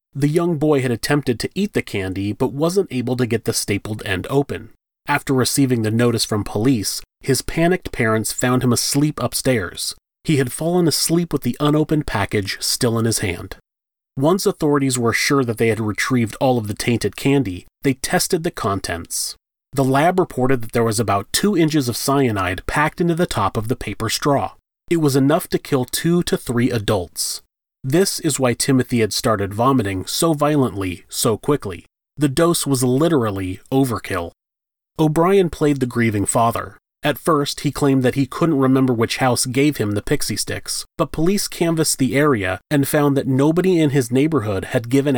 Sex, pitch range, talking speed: male, 110-150 Hz, 185 wpm